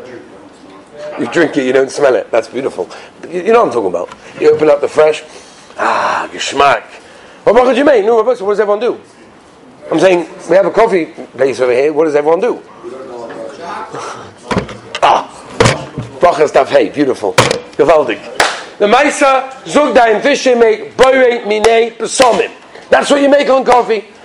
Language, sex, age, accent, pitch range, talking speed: English, male, 40-59, British, 205-300 Hz, 140 wpm